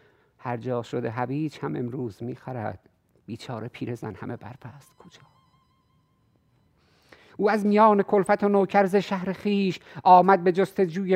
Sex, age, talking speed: male, 50-69, 130 wpm